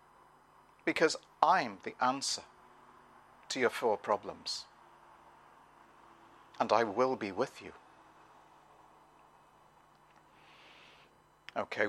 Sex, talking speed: male, 75 wpm